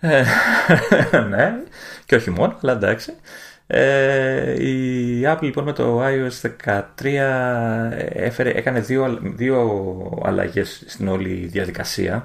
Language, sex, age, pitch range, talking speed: Greek, male, 30-49, 95-120 Hz, 100 wpm